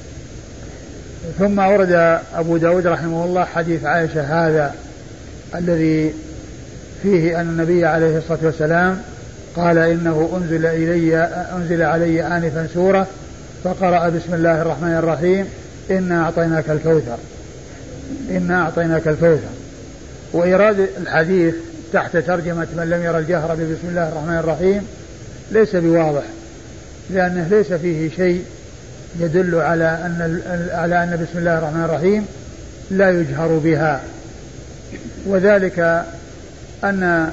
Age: 50-69